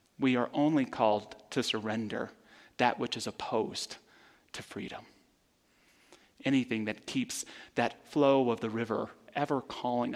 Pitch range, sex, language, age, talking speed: 110-125 Hz, male, English, 30-49, 130 wpm